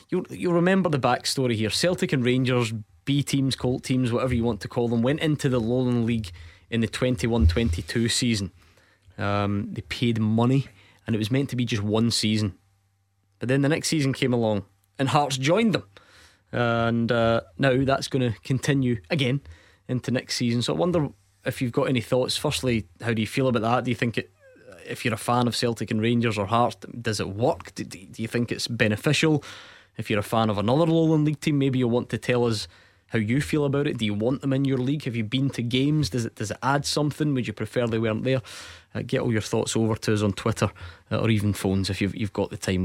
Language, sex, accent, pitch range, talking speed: English, male, British, 110-130 Hz, 230 wpm